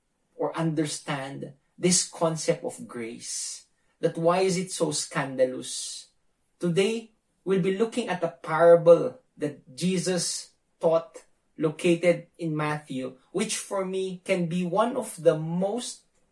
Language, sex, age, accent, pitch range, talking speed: English, male, 20-39, Filipino, 150-180 Hz, 125 wpm